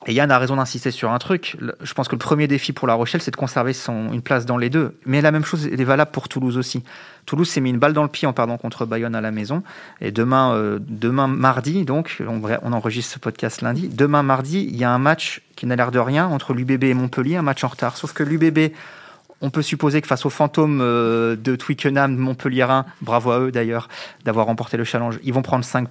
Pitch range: 125-165 Hz